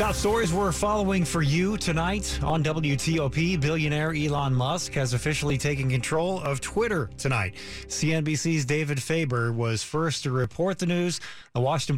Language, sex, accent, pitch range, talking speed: English, male, American, 130-165 Hz, 145 wpm